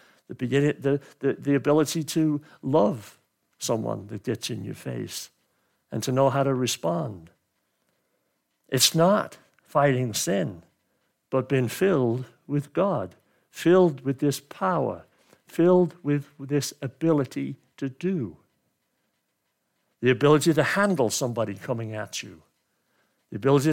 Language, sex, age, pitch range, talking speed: English, male, 60-79, 120-155 Hz, 115 wpm